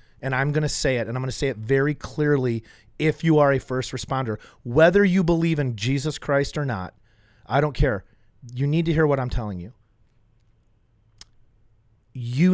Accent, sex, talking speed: American, male, 180 wpm